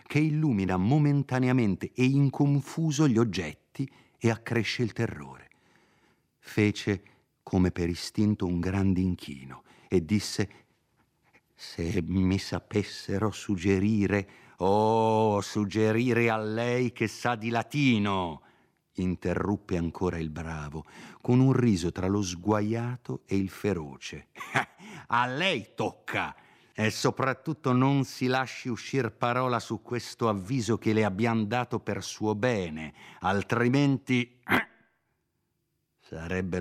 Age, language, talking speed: 50-69, Italian, 110 wpm